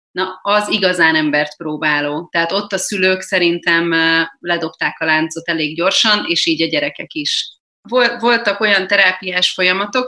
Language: Hungarian